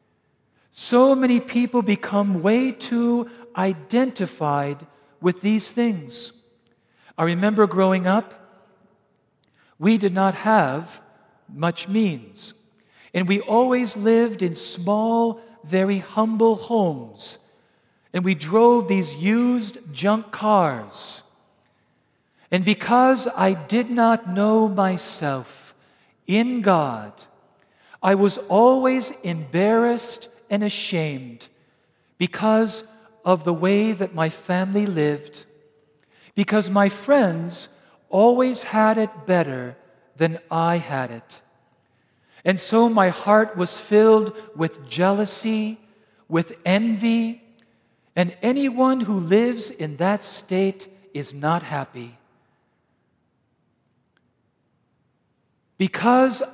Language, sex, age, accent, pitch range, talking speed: English, male, 50-69, American, 170-225 Hz, 95 wpm